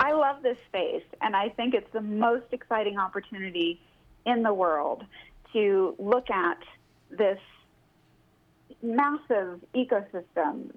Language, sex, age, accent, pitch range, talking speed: English, female, 30-49, American, 200-250 Hz, 115 wpm